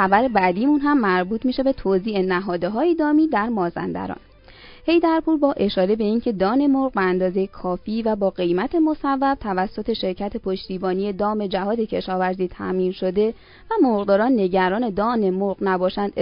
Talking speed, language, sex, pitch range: 150 wpm, Persian, female, 185-250 Hz